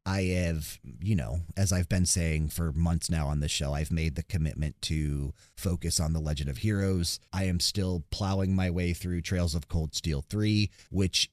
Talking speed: 200 wpm